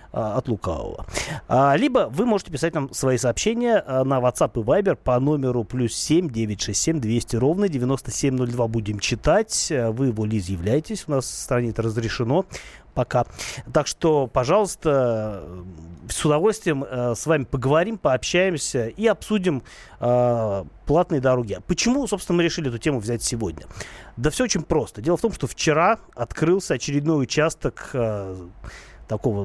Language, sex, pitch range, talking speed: Russian, male, 120-165 Hz, 135 wpm